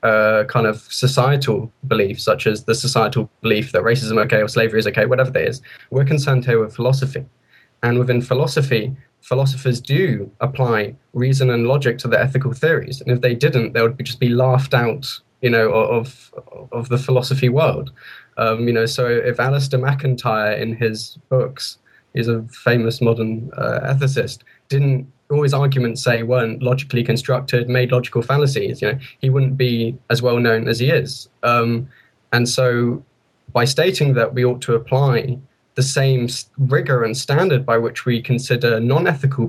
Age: 10-29